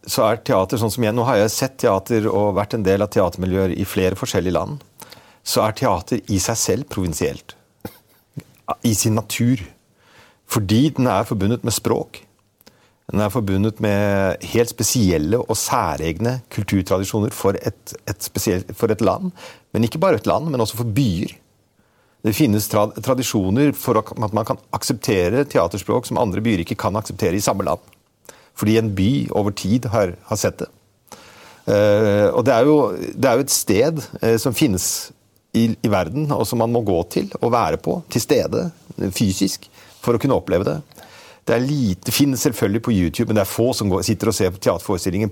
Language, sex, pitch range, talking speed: Danish, male, 100-120 Hz, 175 wpm